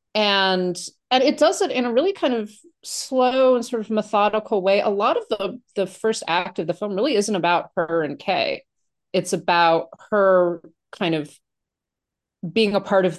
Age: 30-49